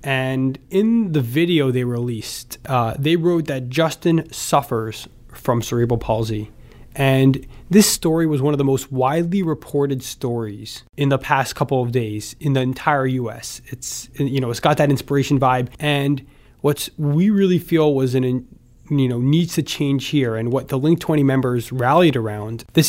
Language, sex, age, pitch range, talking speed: English, male, 20-39, 120-155 Hz, 175 wpm